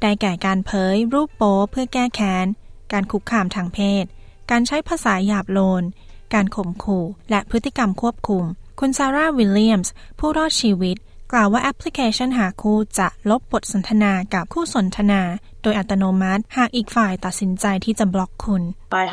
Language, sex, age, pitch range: Thai, female, 20-39, 190-230 Hz